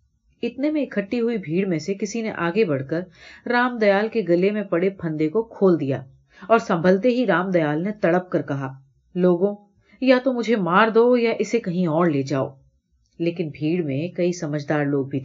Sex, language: female, Urdu